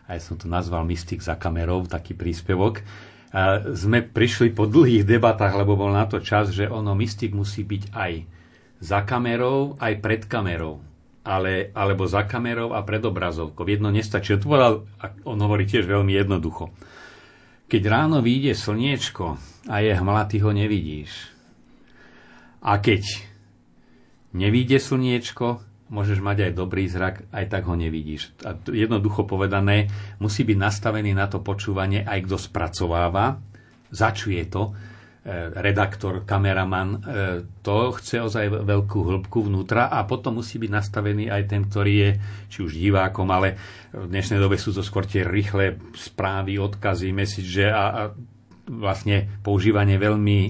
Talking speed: 140 wpm